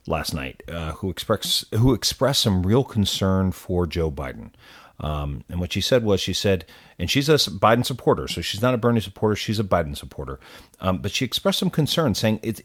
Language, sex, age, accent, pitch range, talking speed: English, male, 40-59, American, 90-125 Hz, 210 wpm